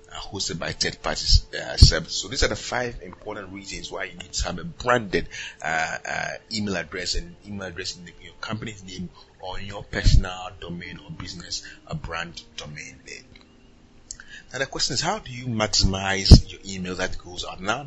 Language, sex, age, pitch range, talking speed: English, male, 30-49, 95-120 Hz, 190 wpm